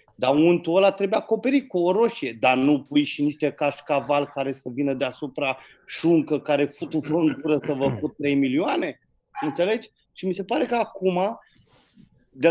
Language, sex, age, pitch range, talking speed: Romanian, male, 30-49, 145-230 Hz, 165 wpm